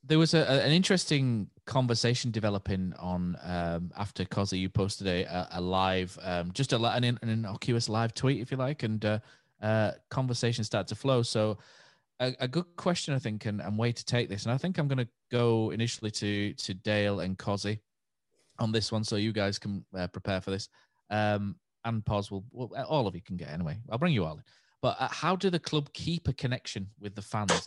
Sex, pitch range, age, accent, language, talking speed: male, 100-125 Hz, 20-39, British, English, 220 wpm